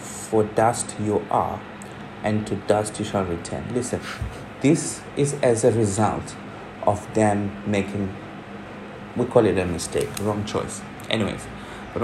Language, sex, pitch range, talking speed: English, male, 105-120 Hz, 140 wpm